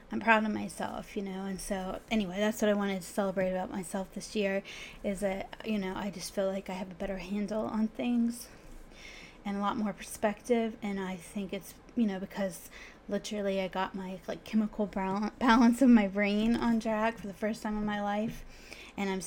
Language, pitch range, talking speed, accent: English, 195-220 Hz, 210 wpm, American